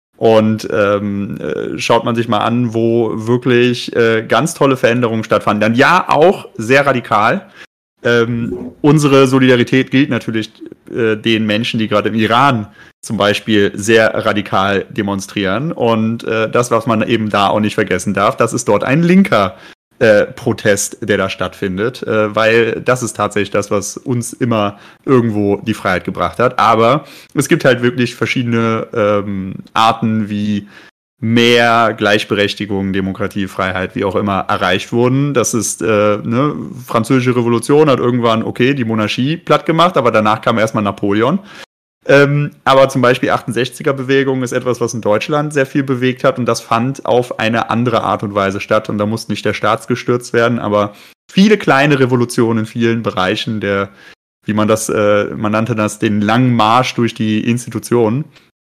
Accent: German